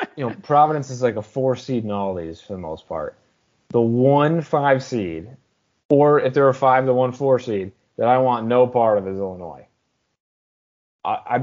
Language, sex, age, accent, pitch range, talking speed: English, male, 20-39, American, 100-130 Hz, 185 wpm